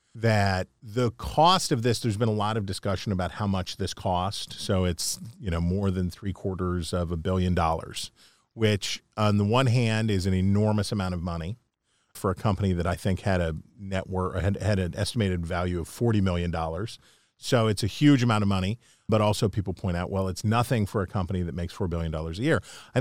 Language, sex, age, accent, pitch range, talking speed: English, male, 40-59, American, 95-115 Hz, 210 wpm